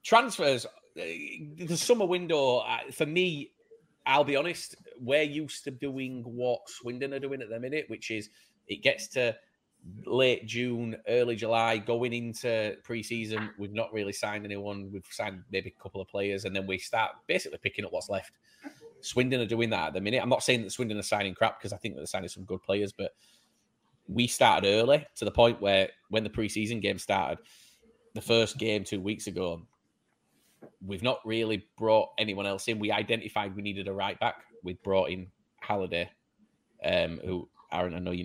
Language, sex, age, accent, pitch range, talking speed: English, male, 30-49, British, 100-125 Hz, 190 wpm